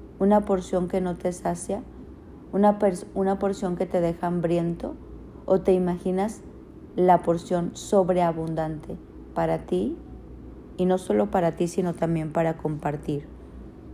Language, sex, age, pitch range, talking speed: Spanish, female, 40-59, 155-185 Hz, 130 wpm